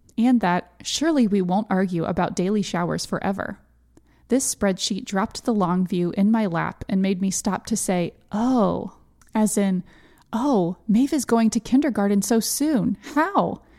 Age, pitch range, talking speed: 20-39, 175-230 Hz, 160 wpm